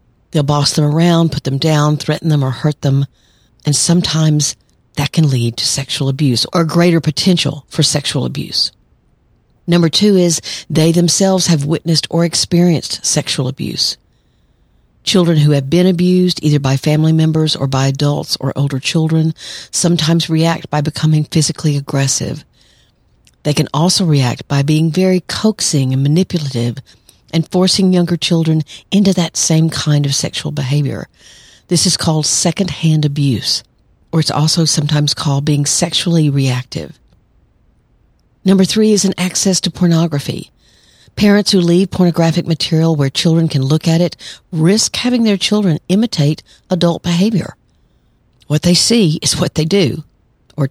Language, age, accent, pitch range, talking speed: English, 50-69, American, 145-175 Hz, 150 wpm